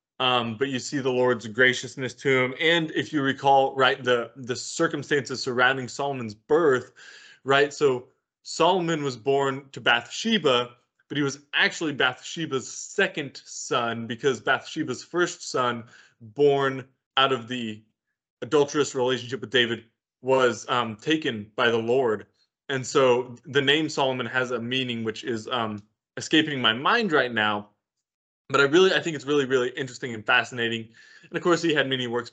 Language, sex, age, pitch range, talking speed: English, male, 20-39, 125-160 Hz, 160 wpm